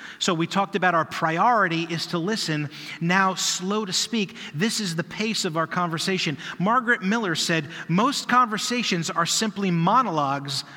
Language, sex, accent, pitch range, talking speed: English, male, American, 160-200 Hz, 155 wpm